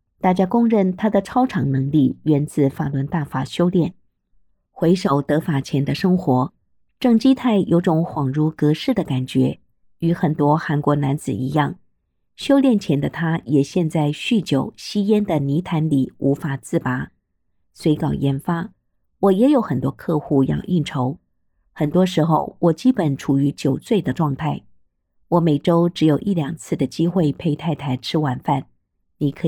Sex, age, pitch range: female, 50-69, 140-185 Hz